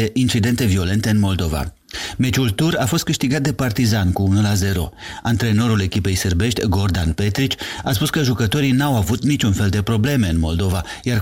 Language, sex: Romanian, male